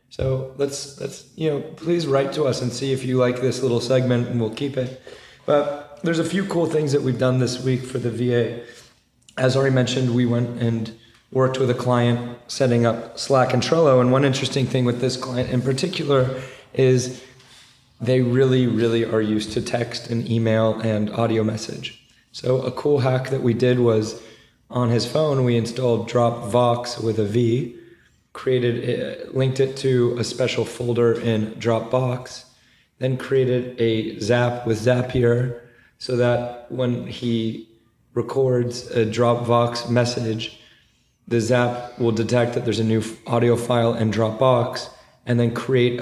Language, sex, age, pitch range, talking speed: English, male, 30-49, 115-130 Hz, 165 wpm